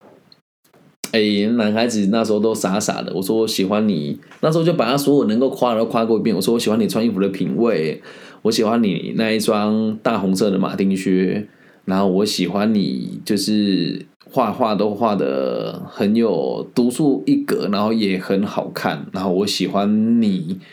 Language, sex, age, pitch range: Chinese, male, 20-39, 100-145 Hz